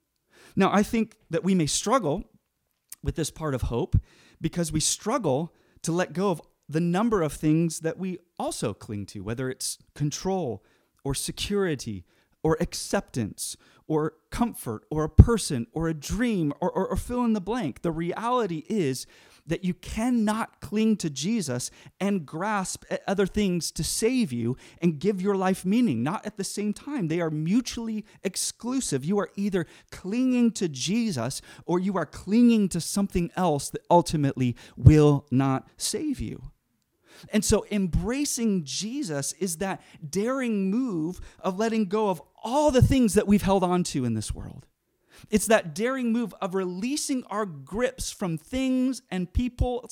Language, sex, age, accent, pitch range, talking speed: English, male, 30-49, American, 145-210 Hz, 160 wpm